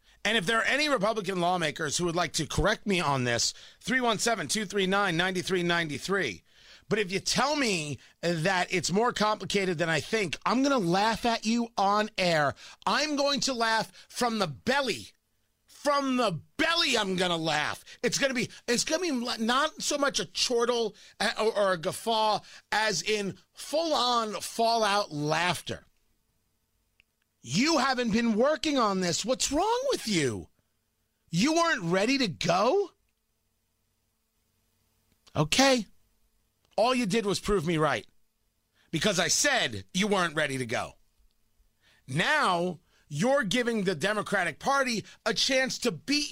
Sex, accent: male, American